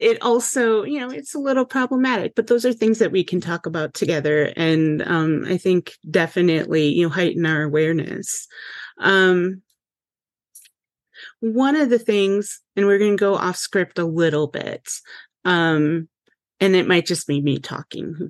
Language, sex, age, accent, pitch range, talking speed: English, female, 30-49, American, 160-185 Hz, 170 wpm